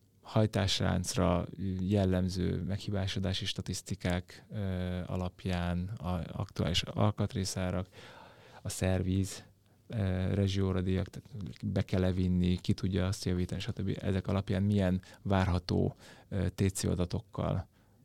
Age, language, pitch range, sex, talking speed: 20-39, Hungarian, 90-105 Hz, male, 90 wpm